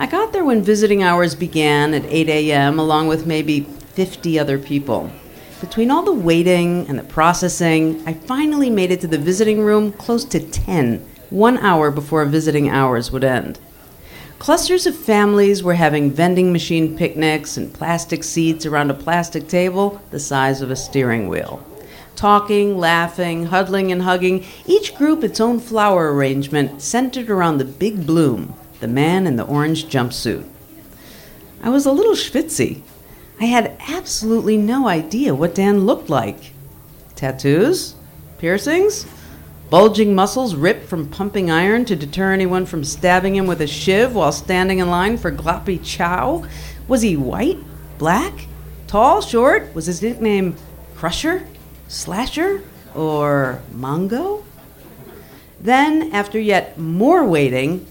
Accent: American